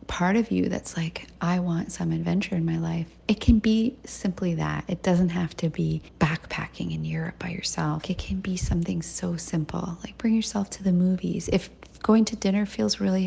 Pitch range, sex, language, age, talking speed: 170-210 Hz, female, English, 30-49, 205 wpm